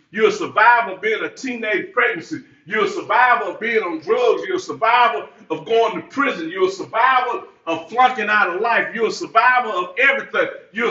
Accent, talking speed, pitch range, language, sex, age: American, 200 wpm, 230-335 Hz, English, male, 50-69